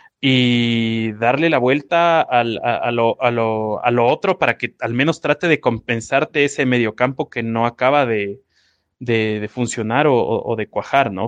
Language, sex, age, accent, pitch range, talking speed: Spanish, male, 20-39, Mexican, 120-140 Hz, 180 wpm